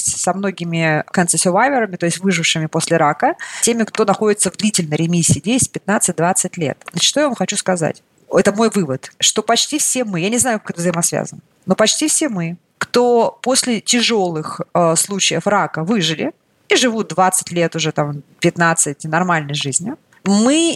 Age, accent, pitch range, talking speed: 30-49, native, 180-260 Hz, 160 wpm